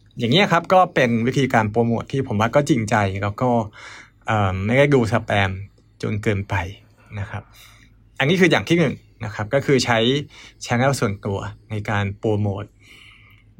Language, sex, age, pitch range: Thai, male, 20-39, 105-135 Hz